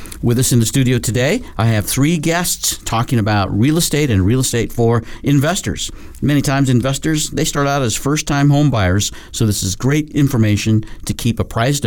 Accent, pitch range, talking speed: American, 105-145 Hz, 190 wpm